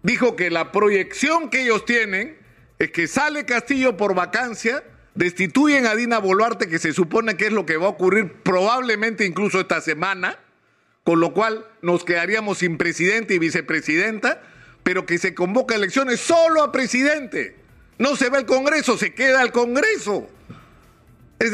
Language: Spanish